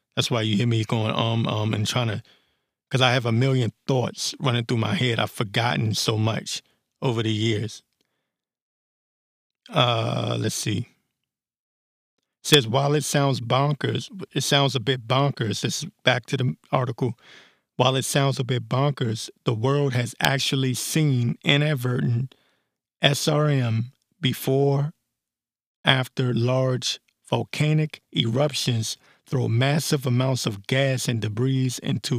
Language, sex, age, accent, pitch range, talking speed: English, male, 50-69, American, 120-140 Hz, 135 wpm